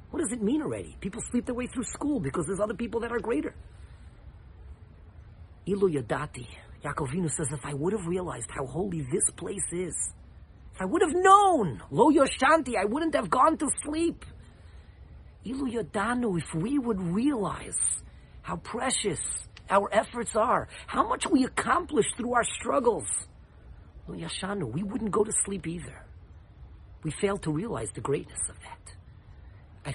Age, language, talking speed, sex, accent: 40-59, English, 160 wpm, male, American